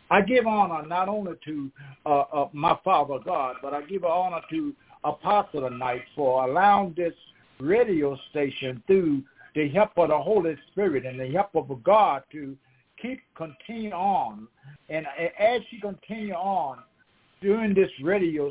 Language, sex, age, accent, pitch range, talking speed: English, male, 60-79, American, 140-205 Hz, 150 wpm